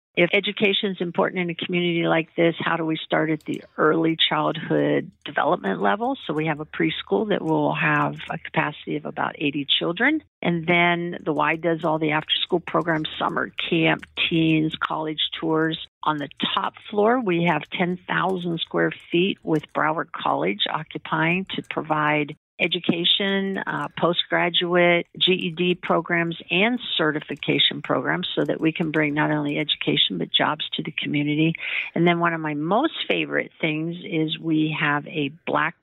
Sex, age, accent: female, 50-69, American